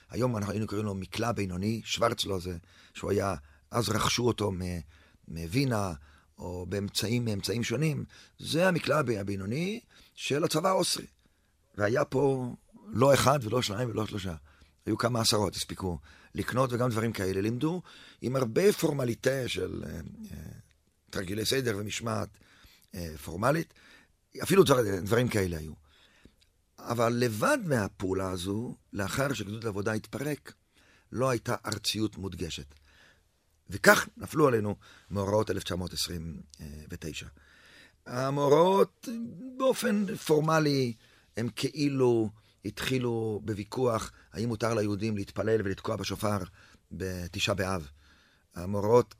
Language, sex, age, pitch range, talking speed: Hebrew, male, 50-69, 95-120 Hz, 110 wpm